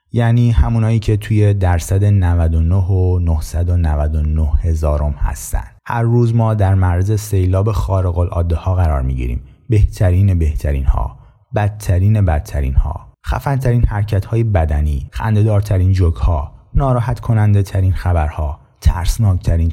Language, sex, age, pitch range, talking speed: Persian, male, 30-49, 80-110 Hz, 105 wpm